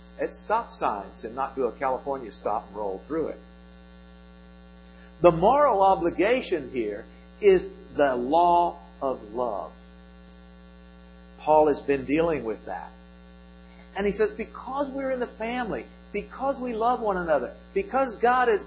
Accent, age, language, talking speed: American, 50-69, English, 140 wpm